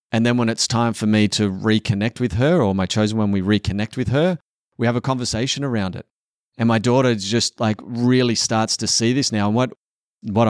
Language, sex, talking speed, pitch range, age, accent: English, male, 225 wpm, 100-120 Hz, 30-49, Australian